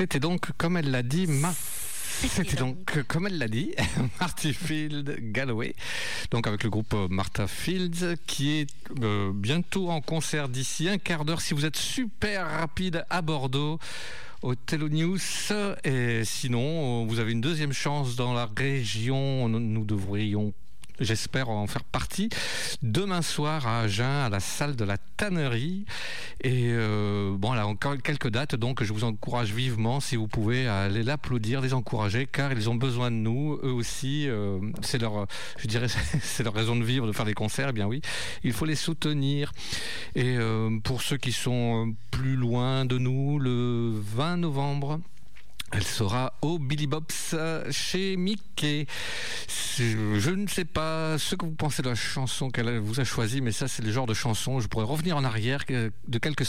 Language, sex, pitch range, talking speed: French, male, 115-155 Hz, 175 wpm